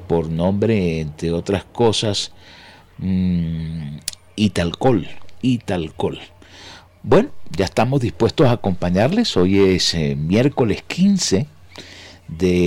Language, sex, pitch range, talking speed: Spanish, male, 90-115 Hz, 100 wpm